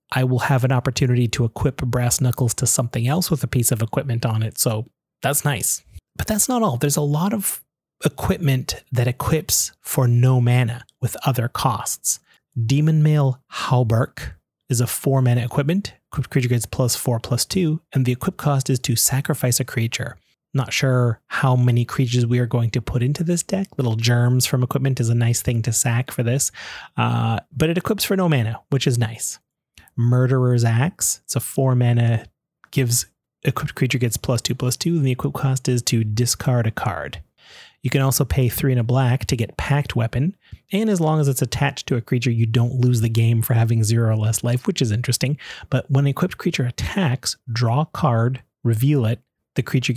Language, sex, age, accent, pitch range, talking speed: English, male, 30-49, American, 120-140 Hz, 205 wpm